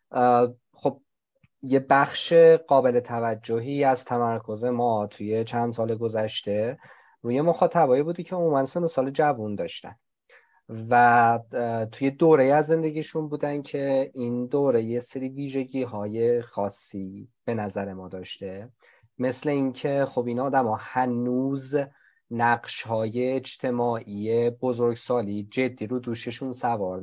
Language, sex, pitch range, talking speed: Persian, male, 115-140 Hz, 120 wpm